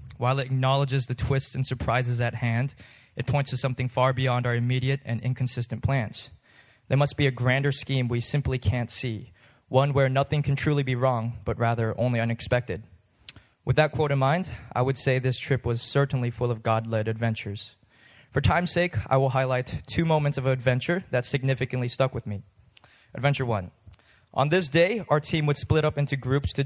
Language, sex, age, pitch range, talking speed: English, male, 20-39, 120-135 Hz, 190 wpm